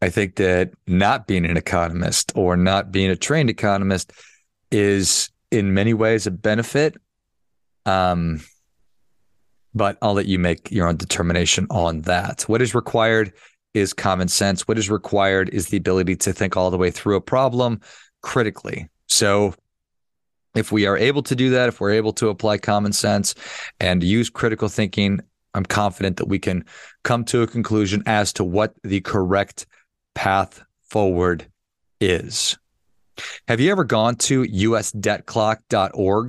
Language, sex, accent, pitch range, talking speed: English, male, American, 95-110 Hz, 155 wpm